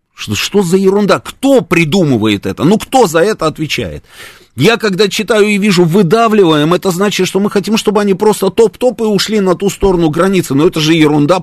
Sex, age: male, 30-49